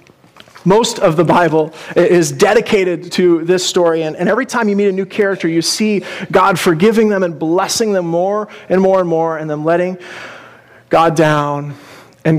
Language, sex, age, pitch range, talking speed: English, male, 30-49, 170-205 Hz, 180 wpm